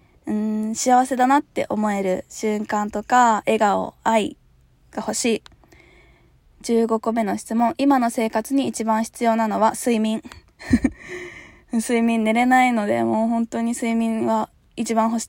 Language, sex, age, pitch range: Japanese, female, 20-39, 215-255 Hz